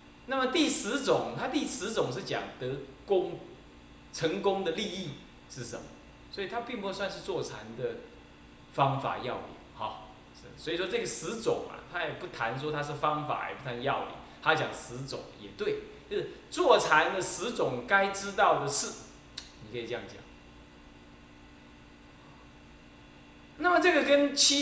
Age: 20-39